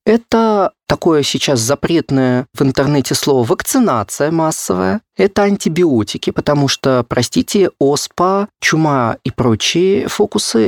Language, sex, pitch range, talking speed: Russian, male, 130-180 Hz, 105 wpm